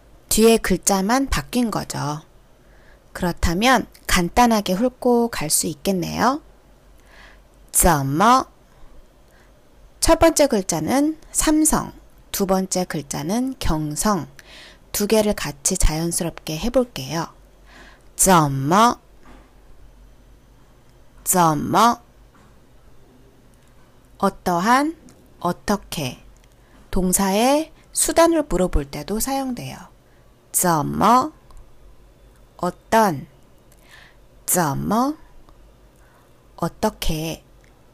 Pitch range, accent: 170-260 Hz, native